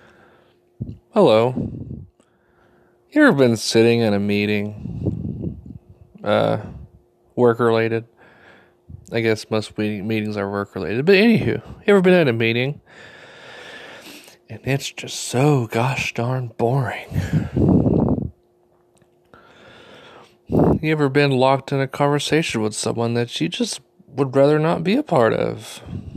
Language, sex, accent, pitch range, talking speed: English, male, American, 115-145 Hz, 115 wpm